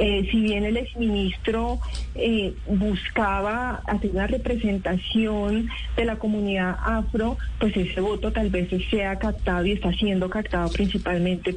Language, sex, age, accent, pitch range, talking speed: Spanish, female, 30-49, Colombian, 195-230 Hz, 135 wpm